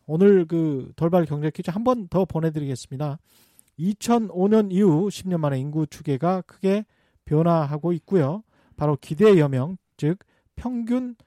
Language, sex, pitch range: Korean, male, 145-200 Hz